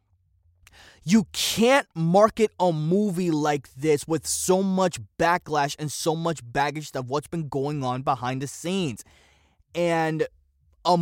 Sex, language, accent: male, English, American